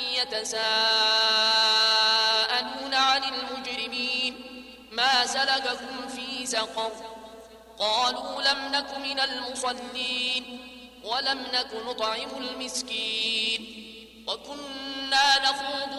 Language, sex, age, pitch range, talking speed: Arabic, male, 20-39, 225-265 Hz, 70 wpm